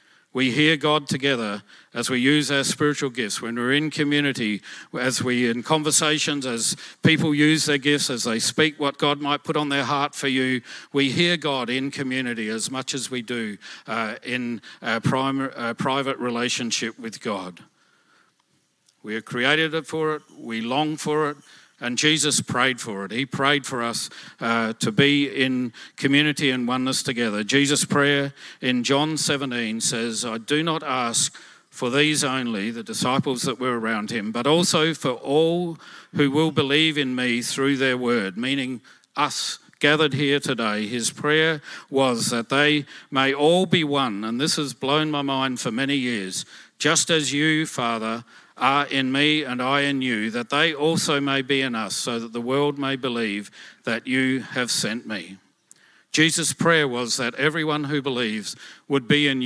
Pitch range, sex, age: 120-150 Hz, male, 50-69